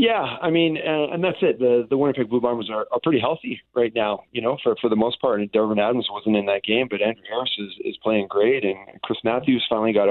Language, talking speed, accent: English, 260 wpm, American